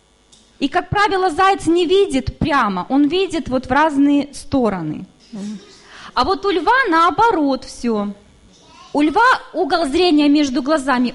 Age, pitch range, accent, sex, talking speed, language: 20-39, 275-360 Hz, native, female, 135 wpm, Russian